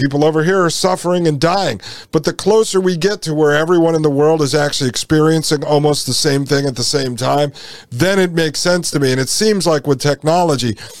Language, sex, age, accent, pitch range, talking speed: English, male, 50-69, American, 130-160 Hz, 225 wpm